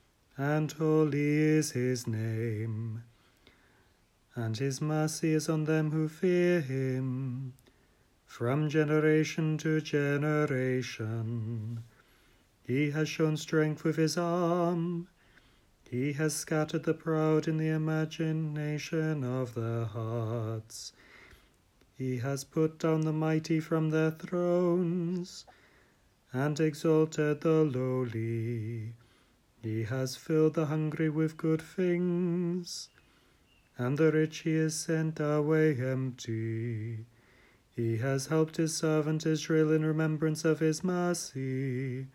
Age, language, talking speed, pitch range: 40-59, English, 110 wpm, 125-160 Hz